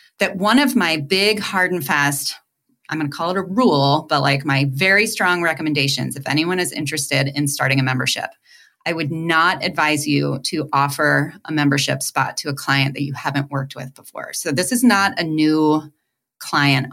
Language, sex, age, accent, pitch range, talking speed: English, female, 30-49, American, 145-190 Hz, 195 wpm